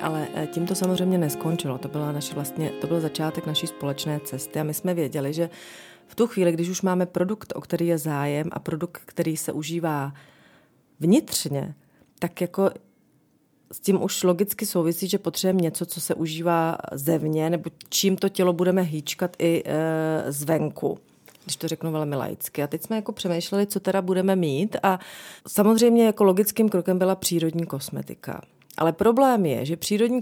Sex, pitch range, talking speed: female, 150-185 Hz, 170 wpm